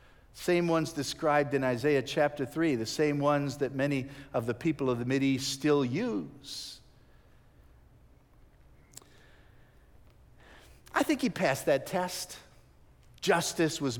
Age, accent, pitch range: 50-69, American, 120-165 Hz